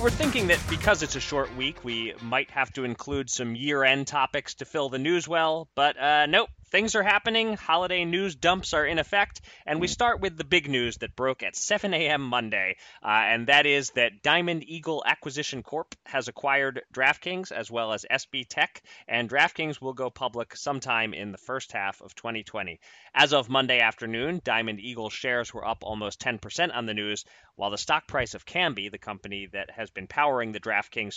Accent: American